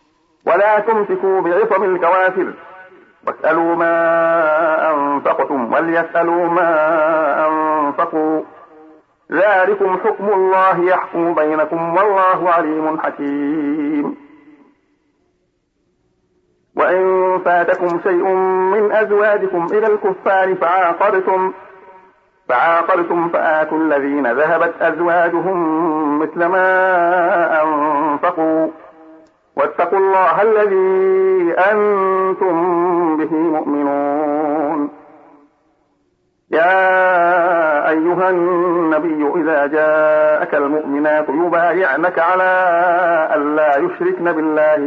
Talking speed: 70 wpm